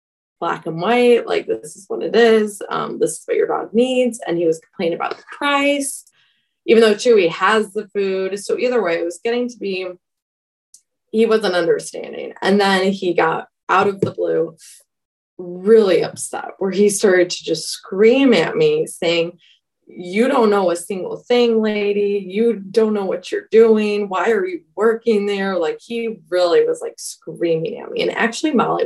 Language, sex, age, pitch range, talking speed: English, female, 20-39, 185-245 Hz, 185 wpm